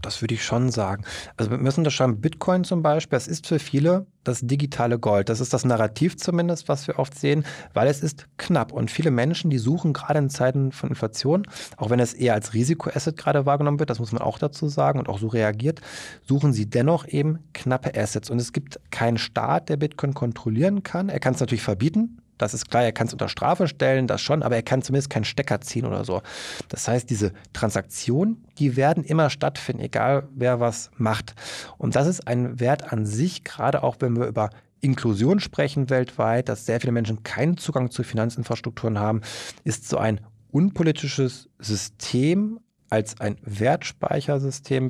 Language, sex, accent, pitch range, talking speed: German, male, German, 115-150 Hz, 195 wpm